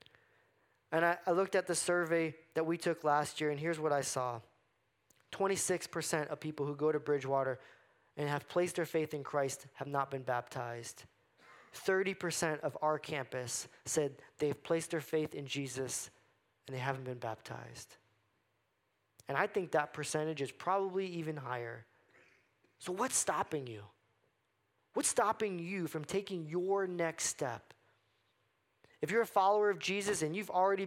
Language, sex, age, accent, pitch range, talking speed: English, male, 20-39, American, 130-175 Hz, 155 wpm